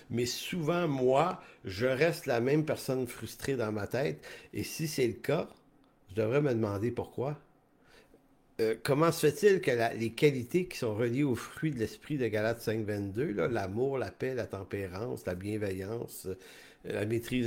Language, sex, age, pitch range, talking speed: English, male, 50-69, 110-140 Hz, 170 wpm